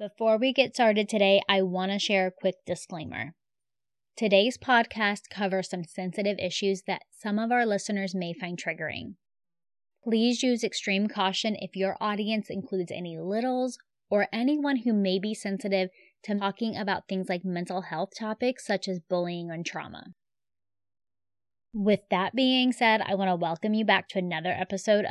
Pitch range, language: 185-230 Hz, English